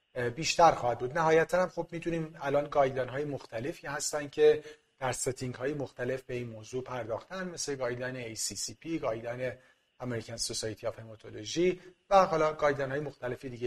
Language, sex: Persian, male